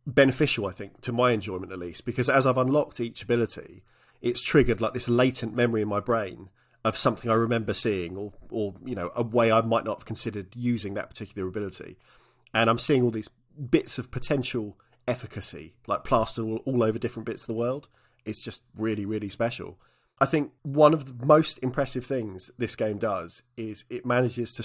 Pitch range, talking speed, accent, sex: 105-125 Hz, 195 wpm, British, male